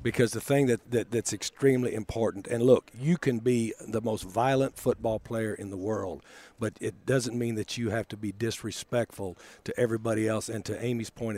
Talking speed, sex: 200 wpm, male